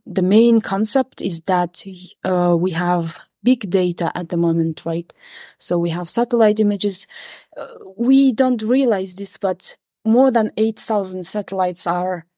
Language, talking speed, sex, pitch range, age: English, 145 wpm, female, 185-225 Hz, 20-39